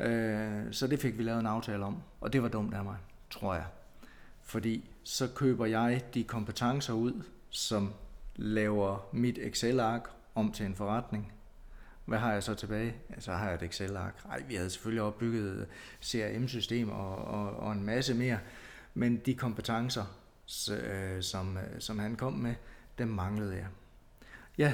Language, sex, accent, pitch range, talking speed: Danish, male, native, 100-120 Hz, 150 wpm